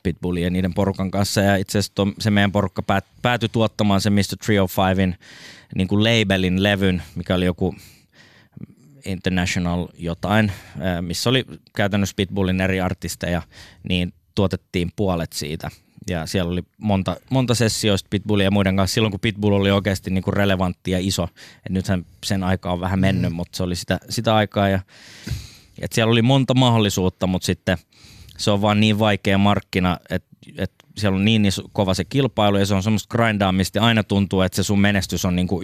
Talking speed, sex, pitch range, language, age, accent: 175 wpm, male, 90-105 Hz, Finnish, 20-39, native